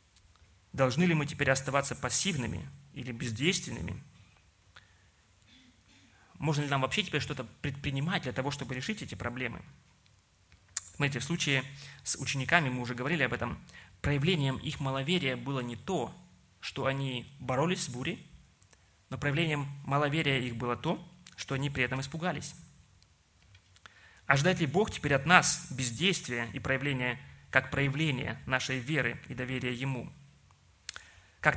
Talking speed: 135 wpm